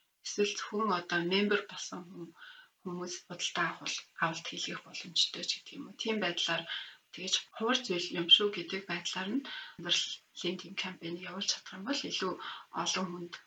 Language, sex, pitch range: English, female, 175-205 Hz